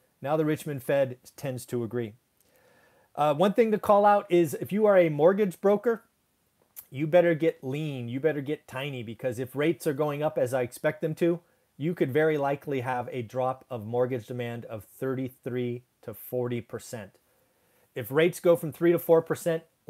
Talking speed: 180 wpm